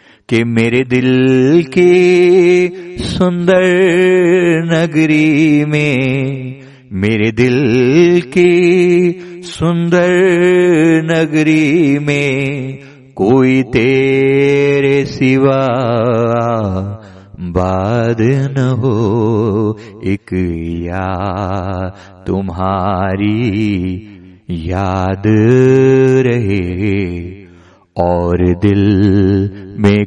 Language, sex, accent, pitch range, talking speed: Hindi, male, native, 105-145 Hz, 50 wpm